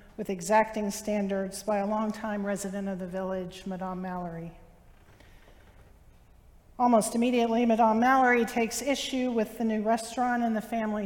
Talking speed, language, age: 135 wpm, English, 50-69